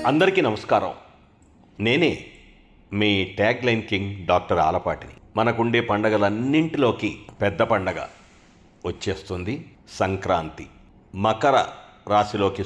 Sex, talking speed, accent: male, 75 wpm, native